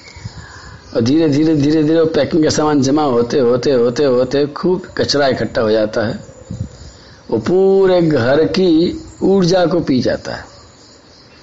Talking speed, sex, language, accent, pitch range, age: 140 wpm, male, Hindi, native, 140-175 Hz, 50-69